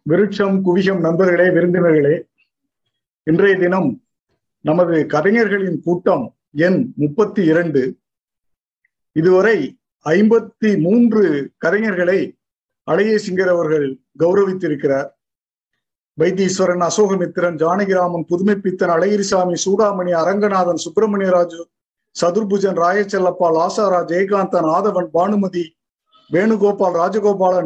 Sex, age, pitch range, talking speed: male, 50-69, 175-205 Hz, 70 wpm